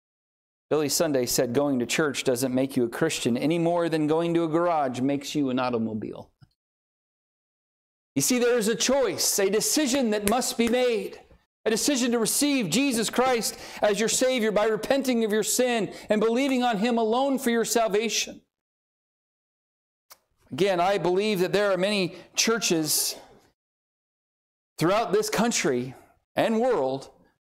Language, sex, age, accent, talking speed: English, male, 40-59, American, 150 wpm